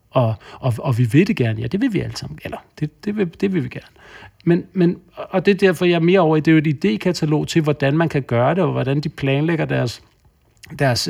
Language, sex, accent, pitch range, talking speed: Danish, male, native, 130-160 Hz, 270 wpm